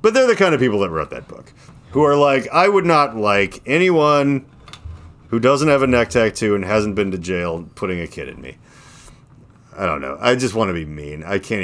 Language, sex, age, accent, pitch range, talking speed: English, male, 30-49, American, 110-170 Hz, 230 wpm